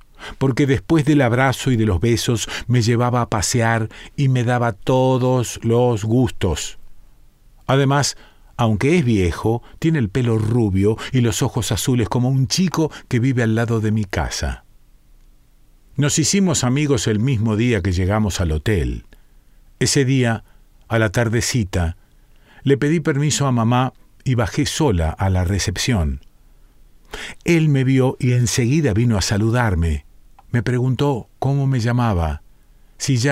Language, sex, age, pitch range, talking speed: Spanish, male, 50-69, 110-140 Hz, 145 wpm